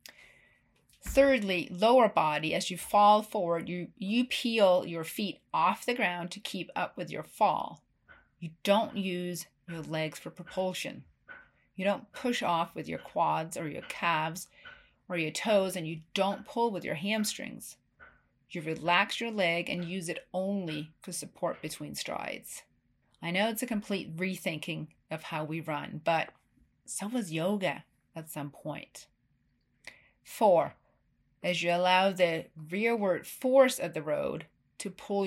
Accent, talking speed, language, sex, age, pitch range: American, 150 wpm, English, female, 40-59, 160-205 Hz